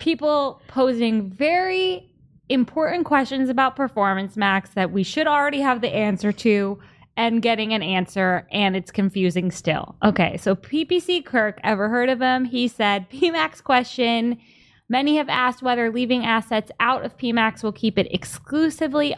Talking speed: 155 wpm